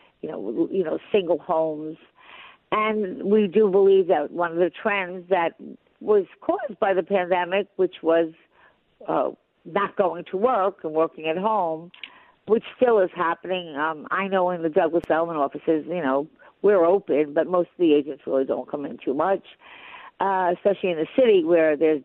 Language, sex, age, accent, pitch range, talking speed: English, female, 50-69, American, 165-215 Hz, 180 wpm